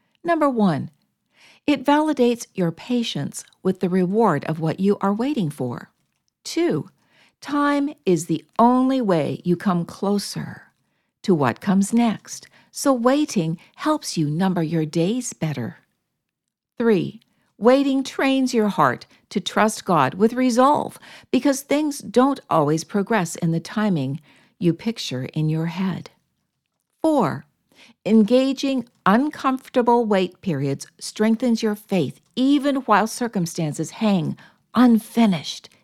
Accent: American